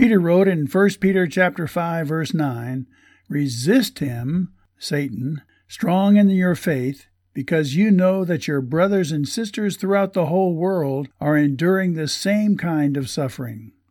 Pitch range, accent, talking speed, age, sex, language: 140-185 Hz, American, 150 wpm, 60-79, male, English